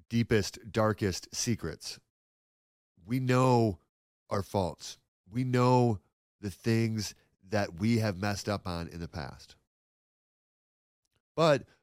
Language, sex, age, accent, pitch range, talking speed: English, male, 30-49, American, 95-120 Hz, 105 wpm